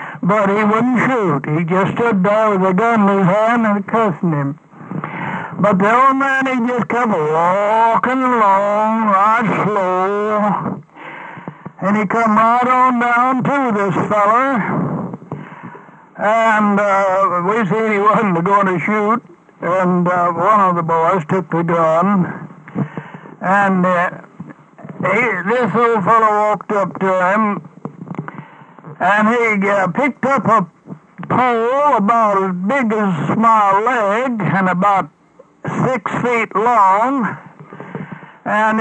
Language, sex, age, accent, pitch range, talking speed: English, male, 60-79, American, 185-230 Hz, 130 wpm